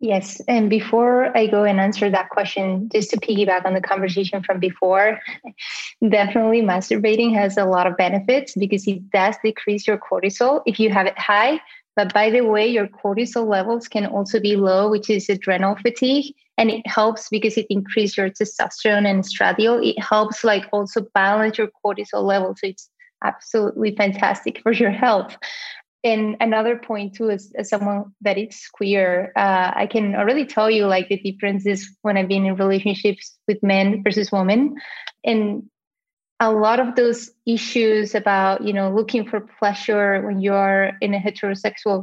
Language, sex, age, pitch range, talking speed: English, female, 20-39, 195-225 Hz, 170 wpm